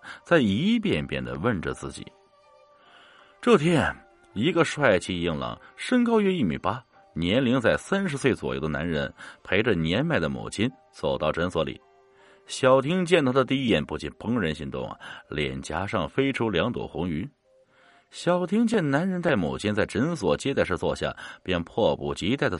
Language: Chinese